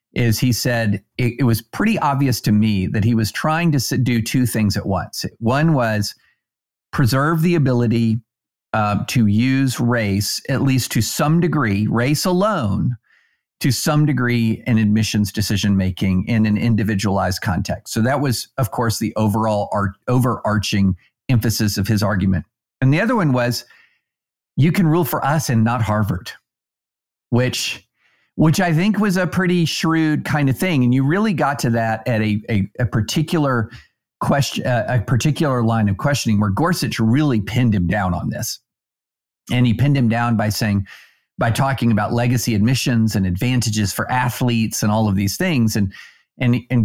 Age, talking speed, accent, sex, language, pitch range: 50-69, 170 wpm, American, male, English, 105-130 Hz